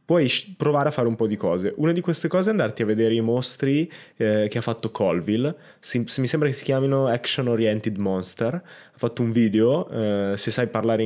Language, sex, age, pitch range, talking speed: Italian, male, 20-39, 115-135 Hz, 220 wpm